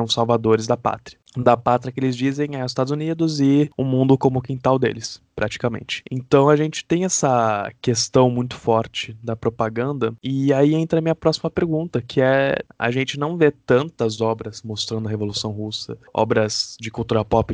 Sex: male